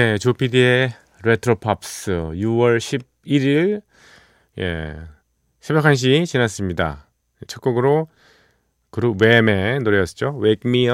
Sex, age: male, 30-49